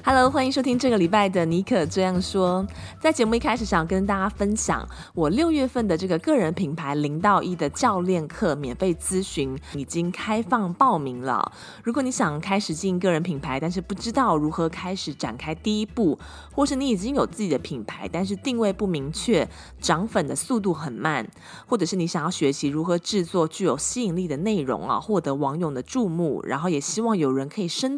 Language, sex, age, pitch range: Chinese, female, 20-39, 150-205 Hz